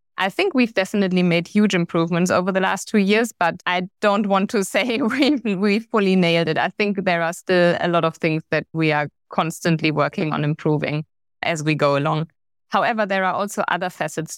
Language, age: English, 20-39